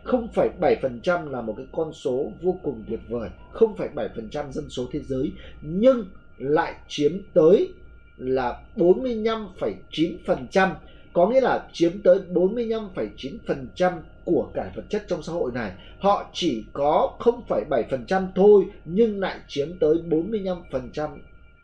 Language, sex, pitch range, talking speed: Vietnamese, male, 155-210 Hz, 120 wpm